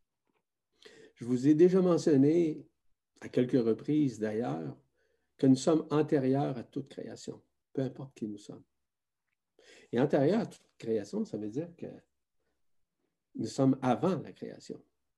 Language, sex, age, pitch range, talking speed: French, male, 50-69, 115-155 Hz, 140 wpm